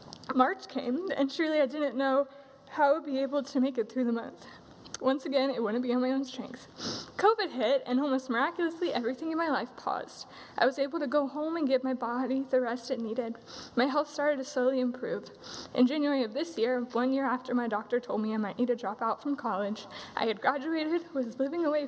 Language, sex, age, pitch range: English, female, 20-39, 260-315 Hz